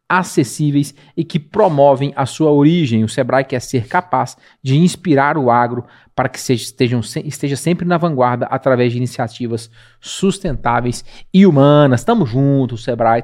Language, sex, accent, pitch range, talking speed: Portuguese, male, Brazilian, 125-155 Hz, 140 wpm